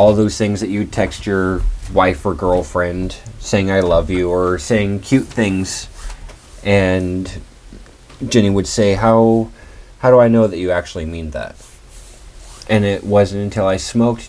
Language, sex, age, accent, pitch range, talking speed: English, male, 30-49, American, 90-110 Hz, 160 wpm